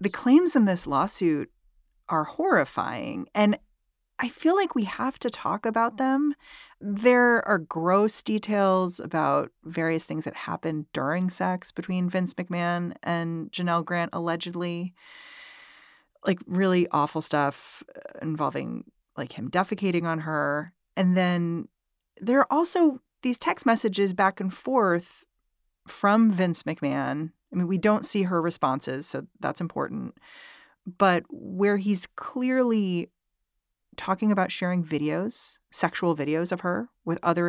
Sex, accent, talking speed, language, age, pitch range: female, American, 135 wpm, English, 40-59, 165-225 Hz